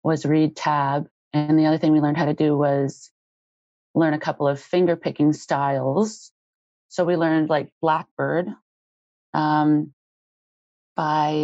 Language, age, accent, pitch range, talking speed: English, 30-49, American, 150-180 Hz, 140 wpm